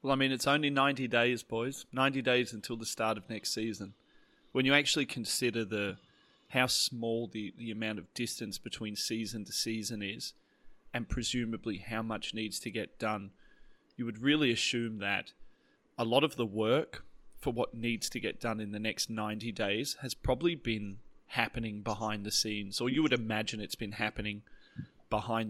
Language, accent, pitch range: English, Australian, 105-125 Hz